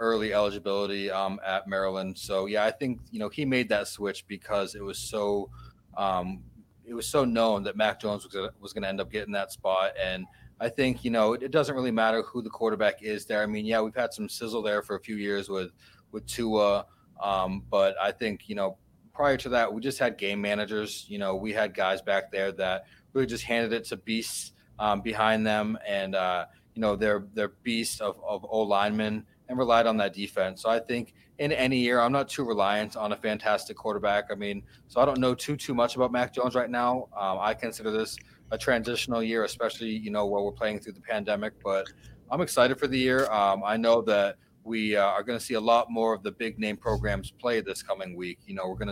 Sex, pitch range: male, 100-115 Hz